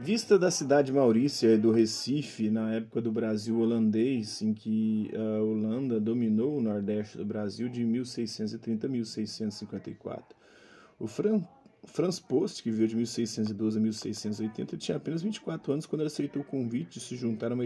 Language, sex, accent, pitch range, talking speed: Portuguese, male, Brazilian, 110-125 Hz, 165 wpm